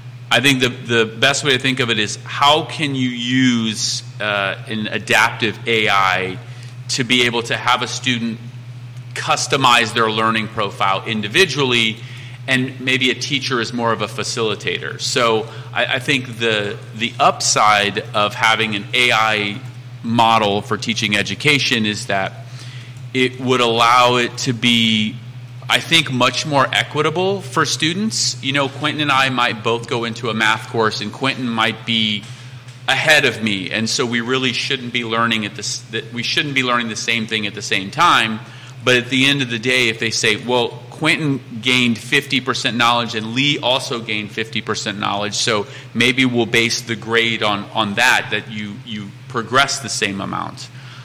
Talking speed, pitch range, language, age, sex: 175 wpm, 110-130 Hz, English, 30-49, male